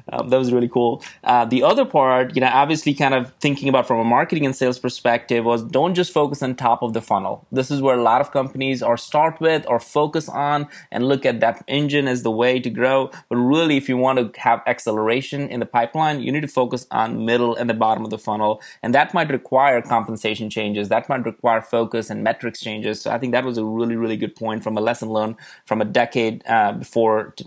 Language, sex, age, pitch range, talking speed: English, male, 20-39, 115-135 Hz, 240 wpm